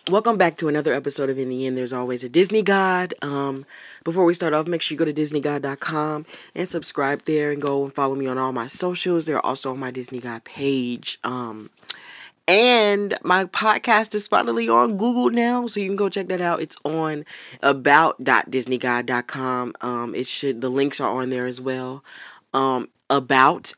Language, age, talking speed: English, 20-39, 185 wpm